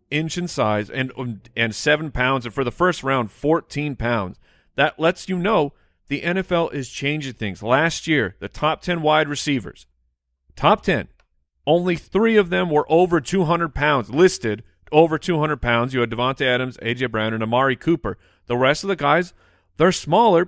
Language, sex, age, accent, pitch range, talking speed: English, male, 40-59, American, 110-155 Hz, 175 wpm